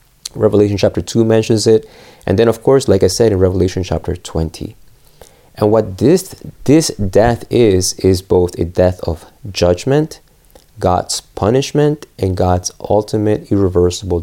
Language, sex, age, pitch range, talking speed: English, male, 30-49, 90-120 Hz, 145 wpm